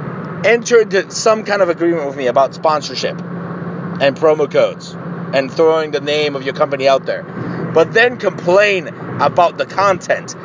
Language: English